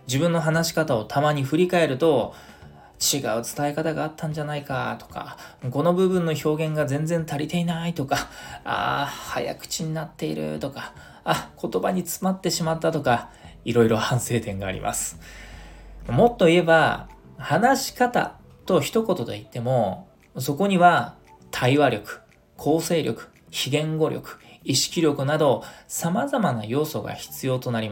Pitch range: 115-165 Hz